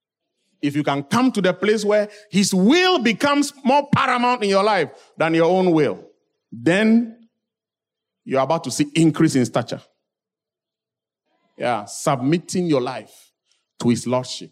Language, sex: English, male